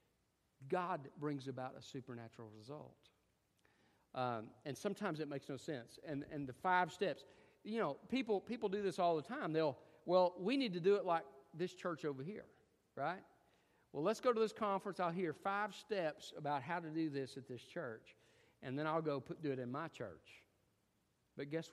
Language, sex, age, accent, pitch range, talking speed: English, male, 50-69, American, 115-185 Hz, 195 wpm